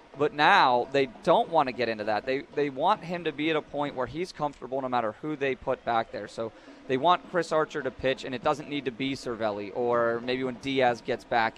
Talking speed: 250 wpm